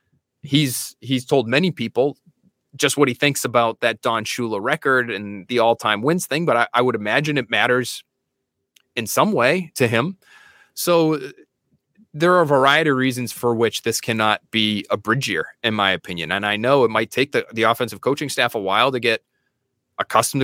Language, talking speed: English, 190 wpm